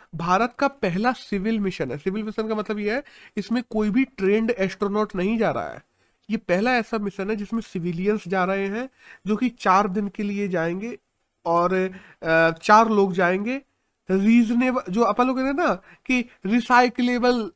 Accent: native